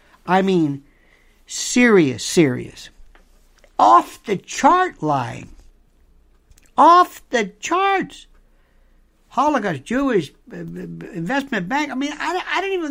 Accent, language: American, English